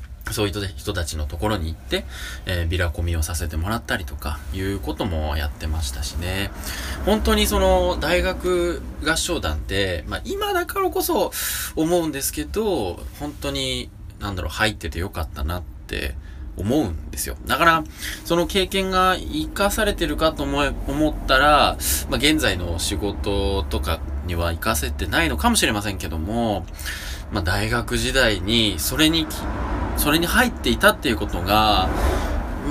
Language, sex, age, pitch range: Japanese, male, 20-39, 80-130 Hz